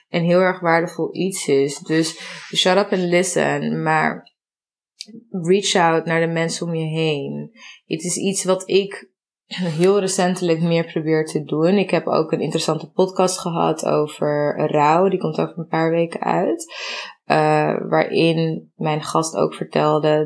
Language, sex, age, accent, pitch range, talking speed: Dutch, female, 20-39, Dutch, 155-185 Hz, 155 wpm